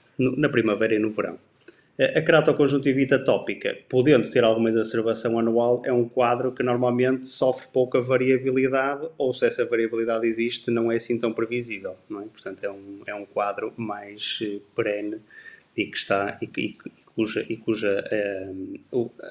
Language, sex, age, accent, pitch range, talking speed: Portuguese, male, 20-39, Brazilian, 110-130 Hz, 160 wpm